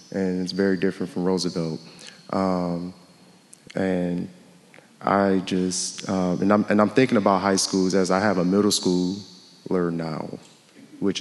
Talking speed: 145 wpm